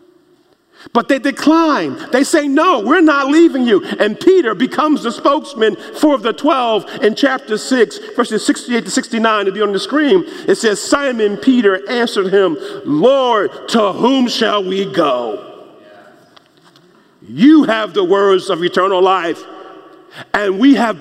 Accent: American